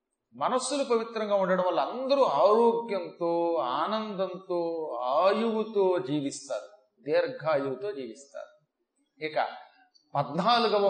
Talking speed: 70 wpm